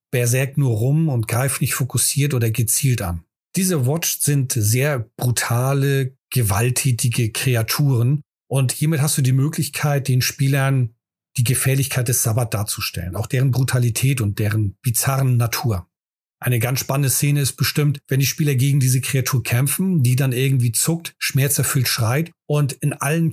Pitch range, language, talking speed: 120-145 Hz, German, 150 wpm